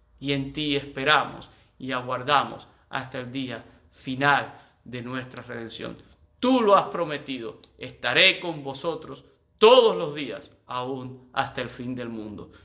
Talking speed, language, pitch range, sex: 140 wpm, Spanish, 120-145 Hz, male